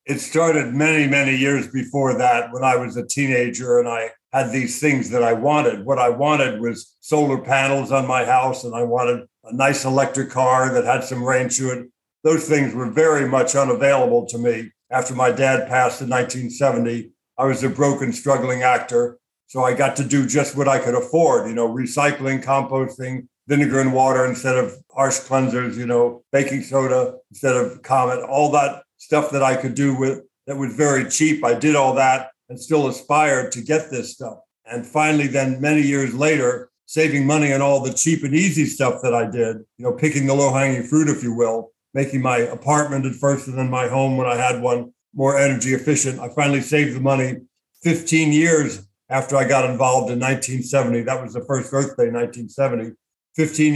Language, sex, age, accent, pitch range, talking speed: English, male, 60-79, American, 125-145 Hz, 195 wpm